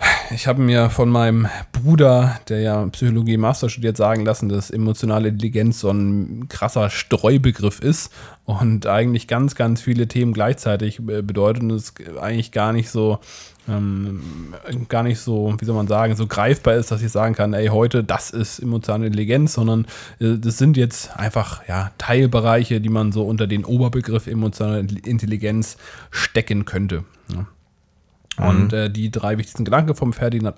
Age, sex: 20-39, male